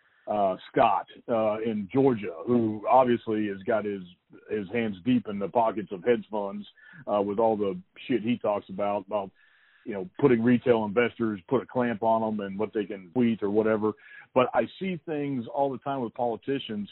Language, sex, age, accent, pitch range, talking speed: English, male, 50-69, American, 110-140 Hz, 190 wpm